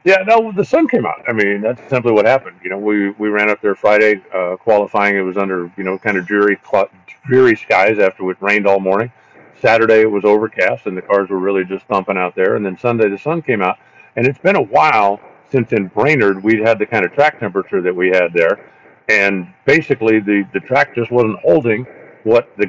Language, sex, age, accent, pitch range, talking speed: English, male, 50-69, American, 100-120 Hz, 230 wpm